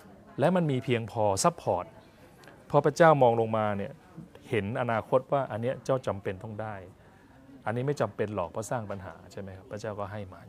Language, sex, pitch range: Thai, male, 105-140 Hz